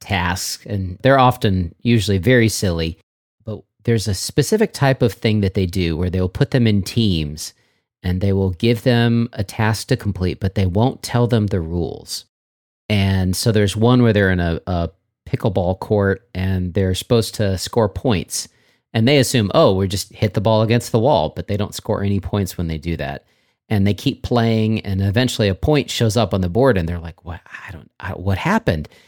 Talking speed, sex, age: 210 wpm, male, 40-59